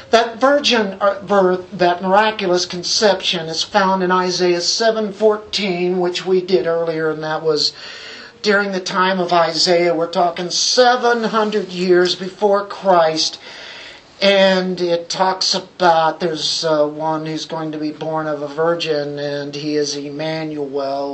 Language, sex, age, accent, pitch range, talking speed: English, male, 50-69, American, 165-200 Hz, 135 wpm